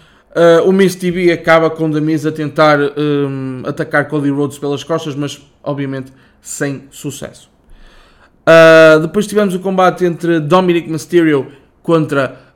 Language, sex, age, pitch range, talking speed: Portuguese, male, 20-39, 135-155 Hz, 120 wpm